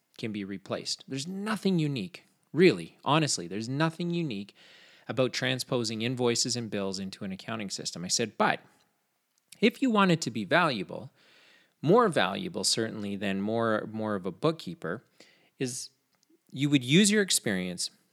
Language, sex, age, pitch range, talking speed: English, male, 30-49, 105-160 Hz, 150 wpm